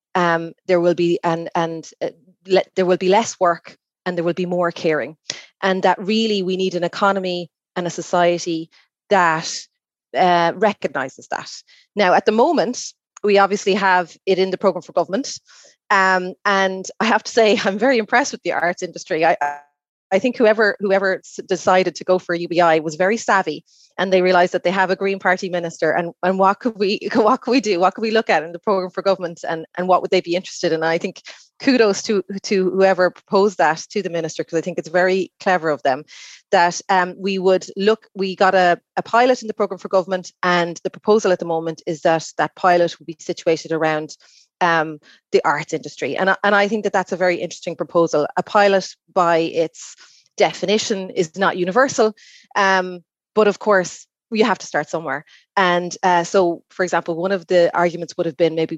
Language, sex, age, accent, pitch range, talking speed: English, female, 30-49, Irish, 170-195 Hz, 205 wpm